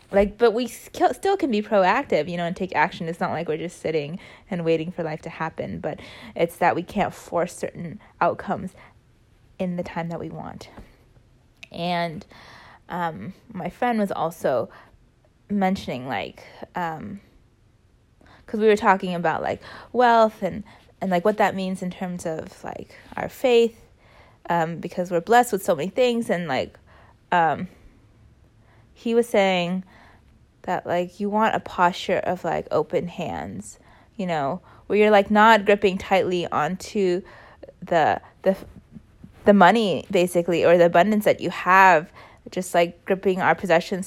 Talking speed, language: 155 wpm, English